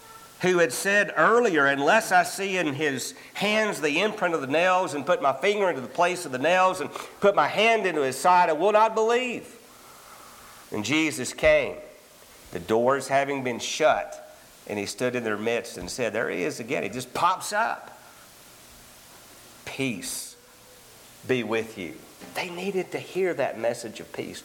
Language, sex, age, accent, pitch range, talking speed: English, male, 50-69, American, 140-220 Hz, 175 wpm